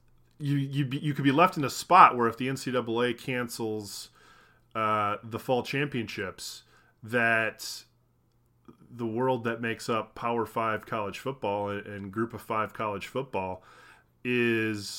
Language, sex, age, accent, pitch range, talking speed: English, male, 20-39, American, 100-120 Hz, 150 wpm